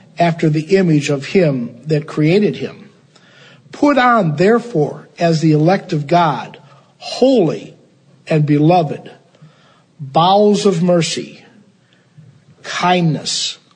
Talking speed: 100 wpm